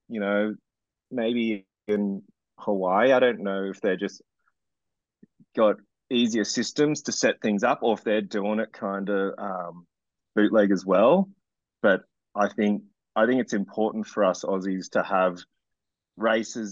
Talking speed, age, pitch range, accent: 150 wpm, 20-39, 95-110 Hz, Australian